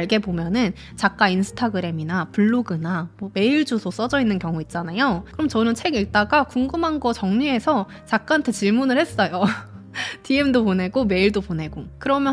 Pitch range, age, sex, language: 185-255 Hz, 20-39, female, Korean